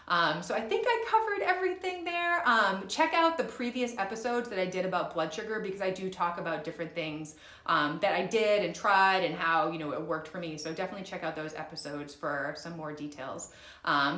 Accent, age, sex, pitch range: American, 30-49, female, 160-235 Hz